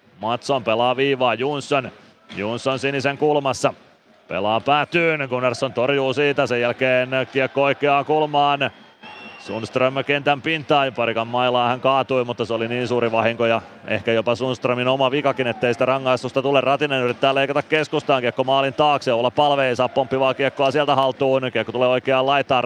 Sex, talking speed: male, 150 wpm